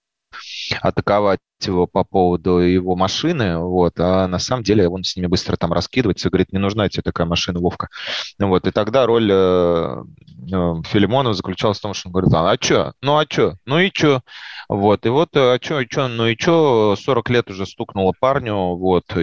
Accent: native